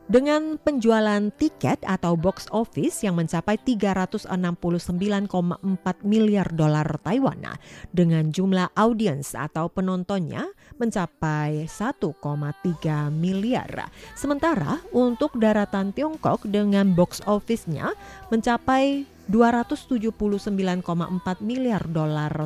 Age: 30-49